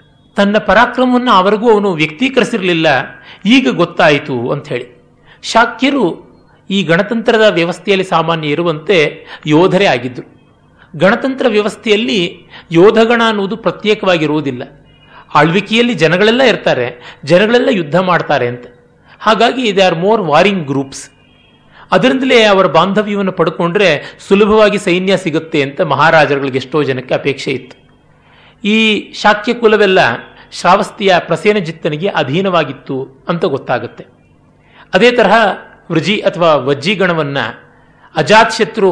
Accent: native